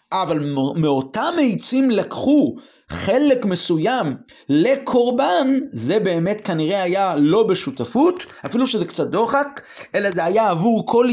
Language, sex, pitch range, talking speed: Hebrew, male, 170-235 Hz, 120 wpm